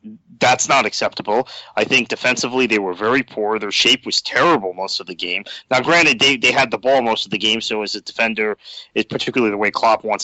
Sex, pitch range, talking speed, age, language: male, 105-130 Hz, 230 wpm, 30-49, English